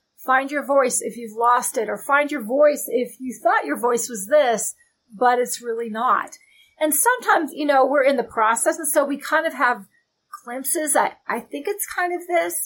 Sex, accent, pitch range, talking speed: female, American, 230-285 Hz, 210 wpm